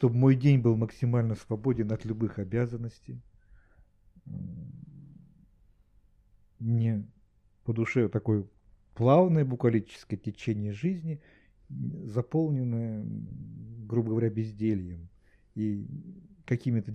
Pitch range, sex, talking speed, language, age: 105-140 Hz, male, 80 wpm, Russian, 50-69